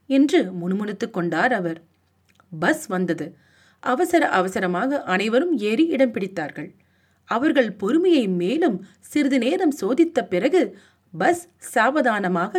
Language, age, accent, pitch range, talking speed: Tamil, 30-49, native, 185-295 Hz, 85 wpm